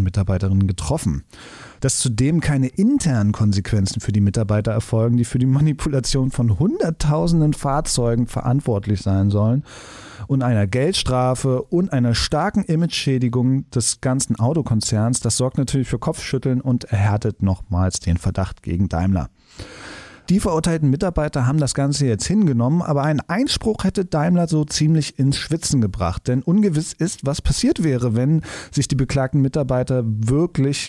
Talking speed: 140 wpm